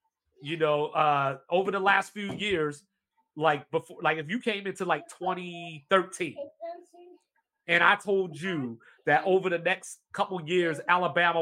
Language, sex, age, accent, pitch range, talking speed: English, male, 30-49, American, 155-195 Hz, 145 wpm